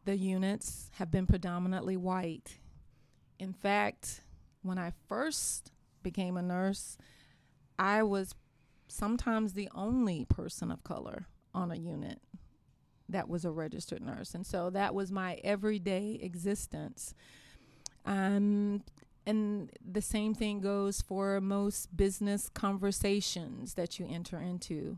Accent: American